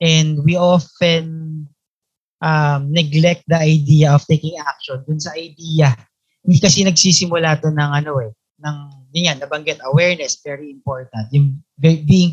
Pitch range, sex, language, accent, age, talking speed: 145-180 Hz, male, English, Filipino, 20-39, 140 wpm